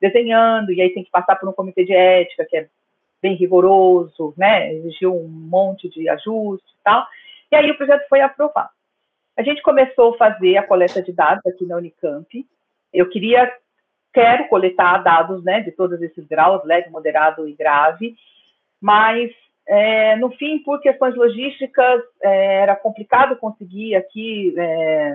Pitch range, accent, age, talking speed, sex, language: 175-235 Hz, Brazilian, 40-59, 160 wpm, female, Portuguese